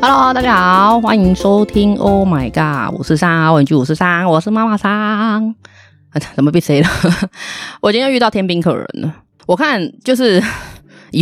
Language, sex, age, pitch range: Chinese, female, 20-39, 145-215 Hz